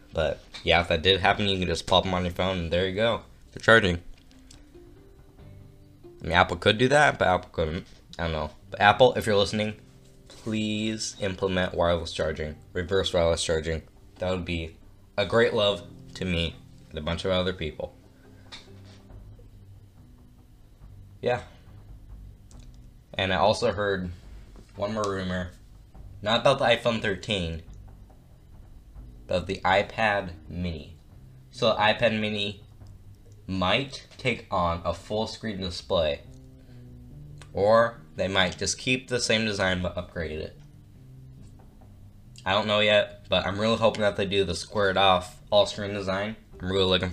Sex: male